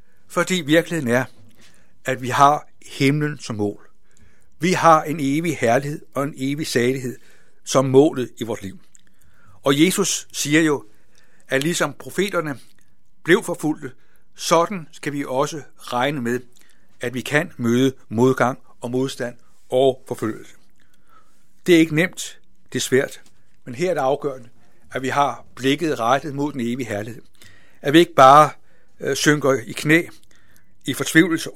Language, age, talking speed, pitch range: Danish, 60-79, 145 wpm, 125-155 Hz